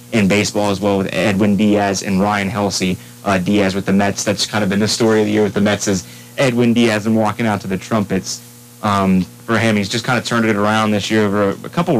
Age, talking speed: 20-39, 255 wpm